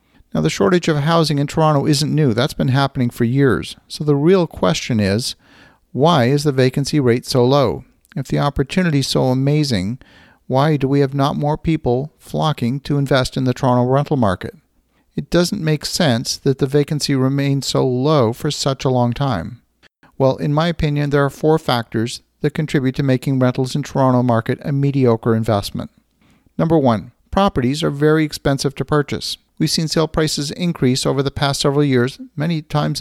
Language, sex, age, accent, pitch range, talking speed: English, male, 50-69, American, 125-155 Hz, 185 wpm